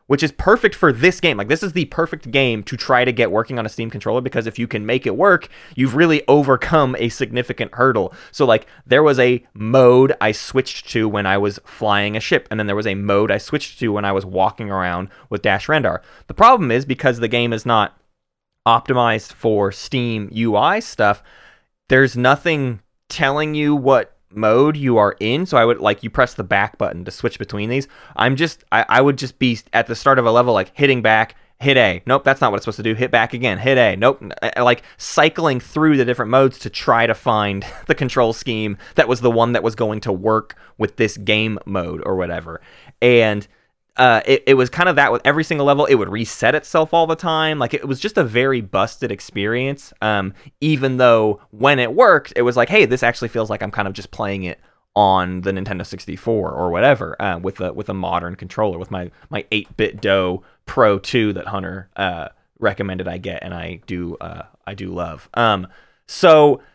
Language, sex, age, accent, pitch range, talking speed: English, male, 20-39, American, 105-135 Hz, 220 wpm